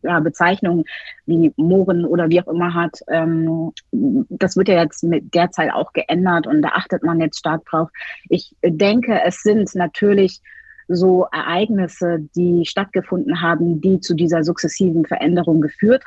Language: German